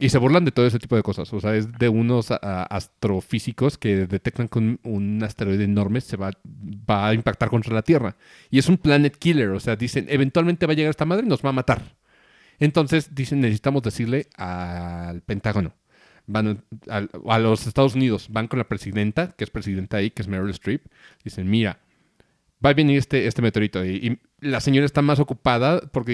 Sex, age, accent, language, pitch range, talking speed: male, 40-59, Mexican, Spanish, 105-140 Hz, 205 wpm